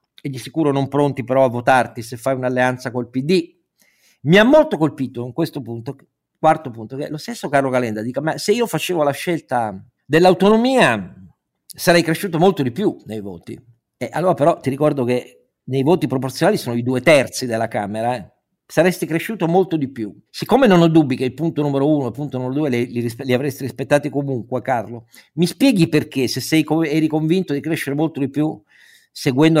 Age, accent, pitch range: 50-69, native, 130-170 Hz